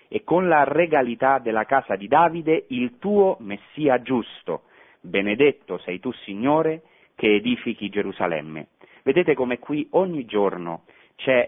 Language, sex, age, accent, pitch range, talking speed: Italian, male, 30-49, native, 105-140 Hz, 130 wpm